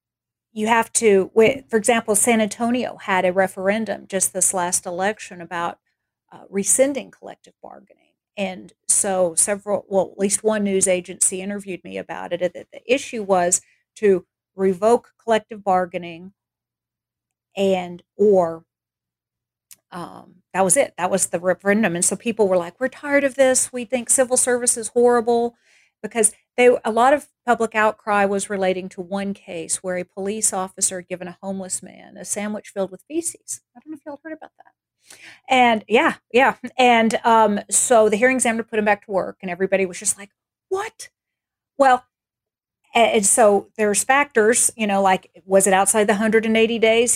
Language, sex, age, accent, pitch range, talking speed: English, female, 40-59, American, 190-235 Hz, 170 wpm